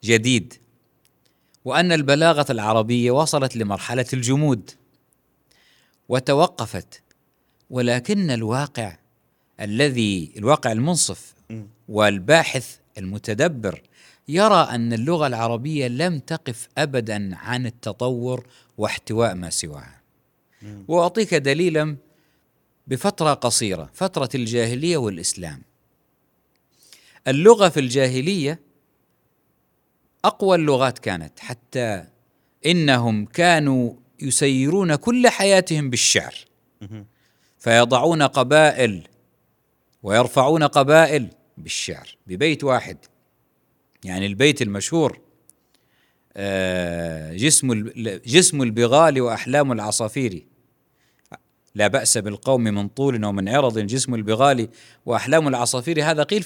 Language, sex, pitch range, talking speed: Arabic, male, 110-155 Hz, 80 wpm